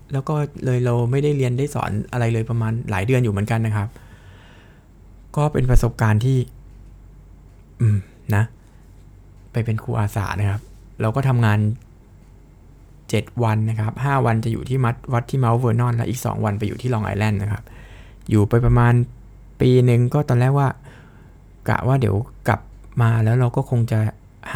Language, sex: Thai, male